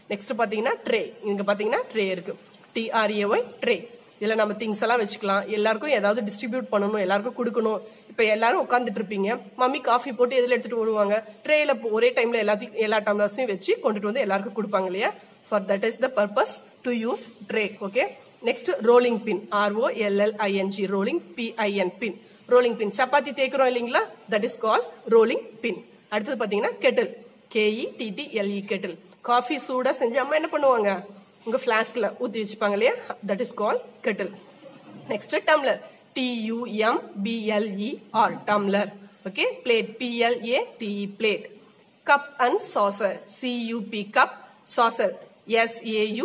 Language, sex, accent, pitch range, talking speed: Tamil, female, native, 205-245 Hz, 105 wpm